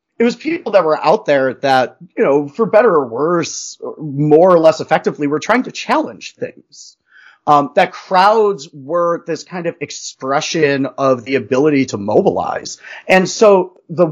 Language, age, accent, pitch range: English, 30-49, American, 140-190 Hz